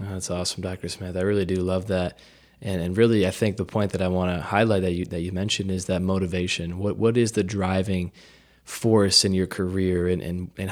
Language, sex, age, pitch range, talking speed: English, male, 20-39, 90-100 Hz, 230 wpm